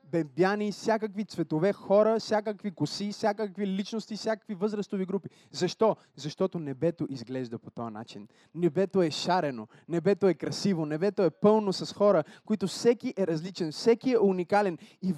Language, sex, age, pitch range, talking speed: Bulgarian, male, 20-39, 160-220 Hz, 145 wpm